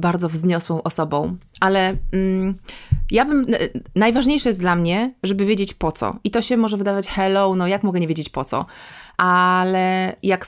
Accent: native